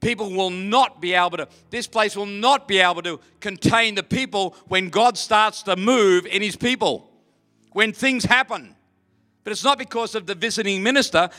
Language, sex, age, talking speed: English, male, 50-69, 185 wpm